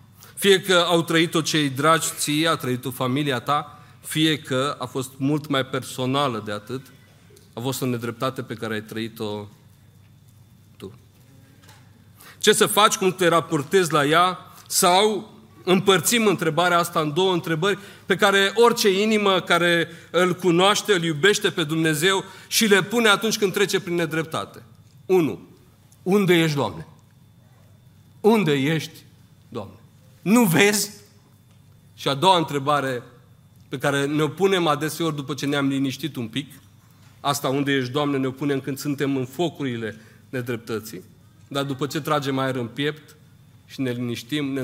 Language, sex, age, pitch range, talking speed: Romanian, male, 40-59, 120-165 Hz, 145 wpm